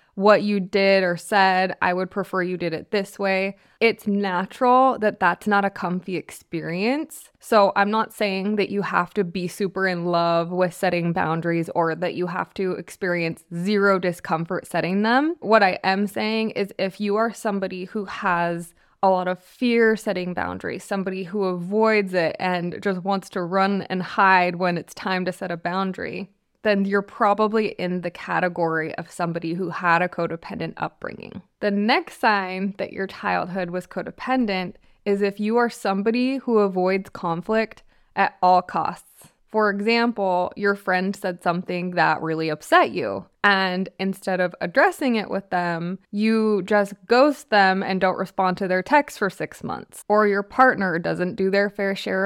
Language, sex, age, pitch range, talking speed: English, female, 20-39, 180-210 Hz, 175 wpm